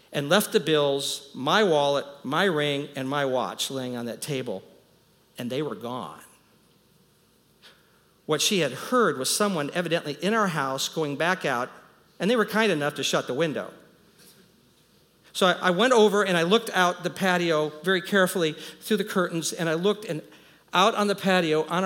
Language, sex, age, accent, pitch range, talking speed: English, male, 50-69, American, 135-185 Hz, 180 wpm